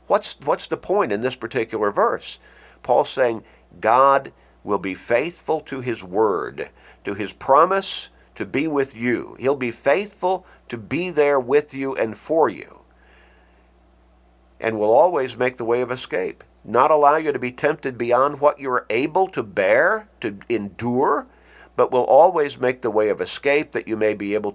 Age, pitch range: 50-69, 95-145 Hz